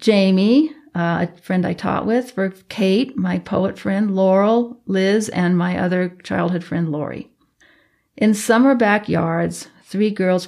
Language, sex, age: English, female, 50-69